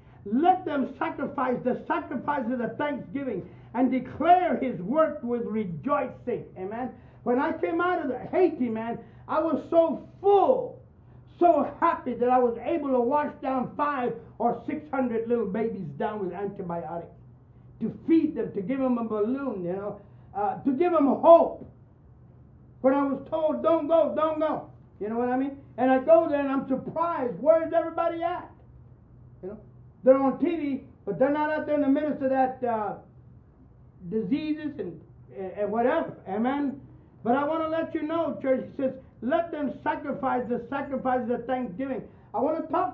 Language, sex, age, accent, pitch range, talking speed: English, male, 50-69, American, 230-300 Hz, 175 wpm